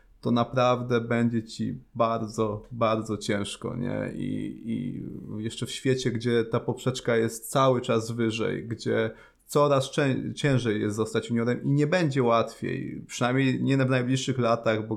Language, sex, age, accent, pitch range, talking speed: Polish, male, 20-39, native, 115-125 Hz, 140 wpm